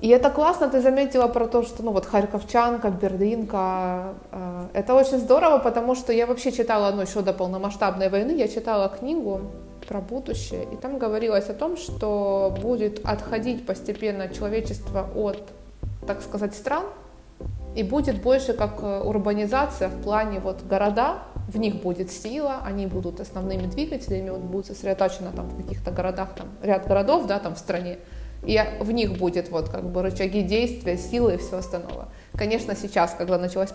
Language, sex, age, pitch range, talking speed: Ukrainian, female, 20-39, 190-230 Hz, 160 wpm